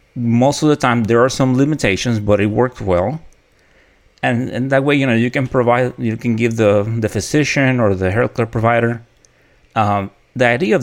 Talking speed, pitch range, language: 200 wpm, 100-130 Hz, English